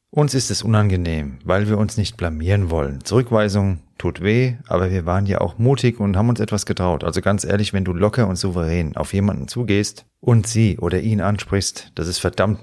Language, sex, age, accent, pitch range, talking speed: German, male, 40-59, German, 90-105 Hz, 205 wpm